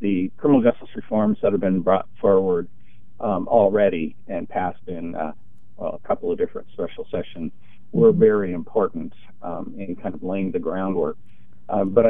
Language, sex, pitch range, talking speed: English, male, 95-125 Hz, 170 wpm